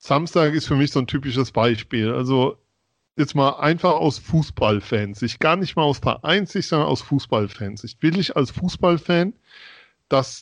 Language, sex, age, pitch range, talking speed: German, male, 40-59, 125-155 Hz, 165 wpm